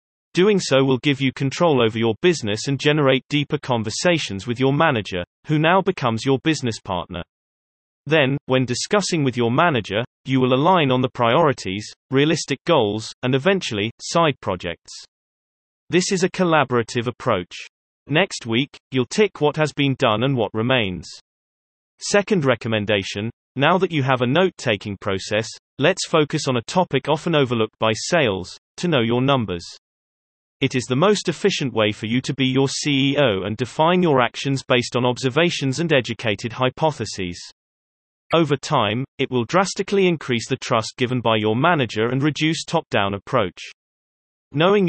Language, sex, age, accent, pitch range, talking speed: English, male, 30-49, British, 115-155 Hz, 155 wpm